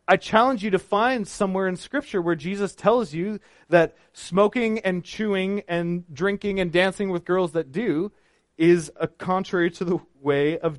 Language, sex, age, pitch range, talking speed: English, male, 30-49, 155-195 Hz, 170 wpm